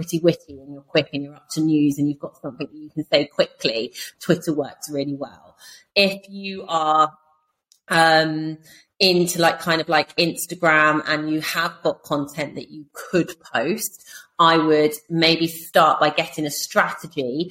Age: 30-49